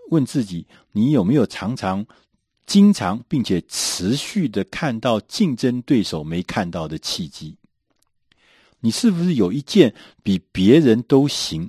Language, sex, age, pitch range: Chinese, male, 50-69, 85-140 Hz